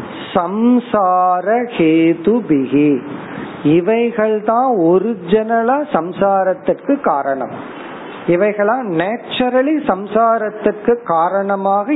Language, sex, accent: Tamil, male, native